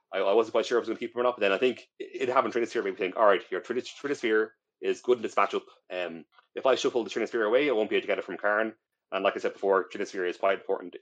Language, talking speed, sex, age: English, 305 wpm, male, 30-49